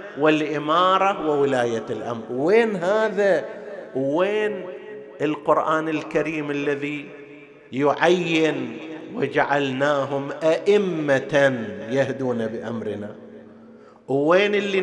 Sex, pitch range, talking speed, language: male, 145-185 Hz, 65 wpm, Arabic